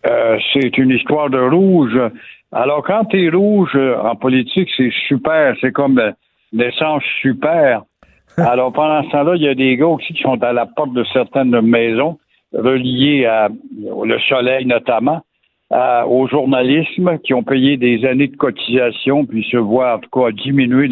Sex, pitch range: male, 130-165 Hz